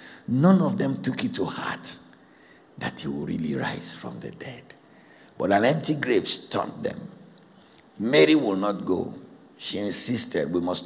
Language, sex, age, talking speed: English, male, 60-79, 160 wpm